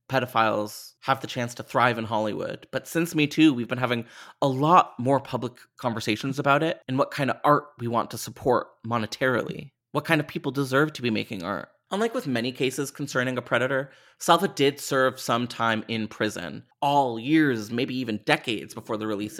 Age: 30-49